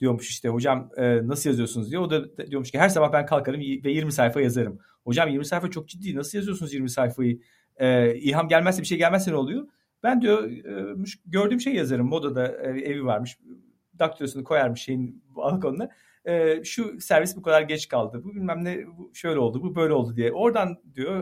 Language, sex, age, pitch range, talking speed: Turkish, male, 50-69, 125-155 Hz, 195 wpm